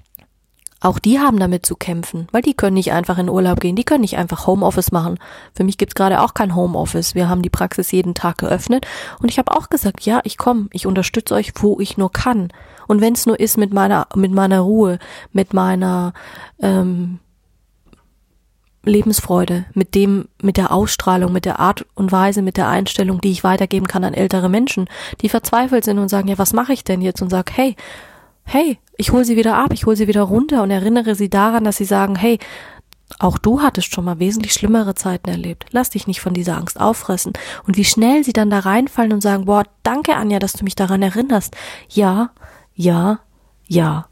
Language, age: German, 30-49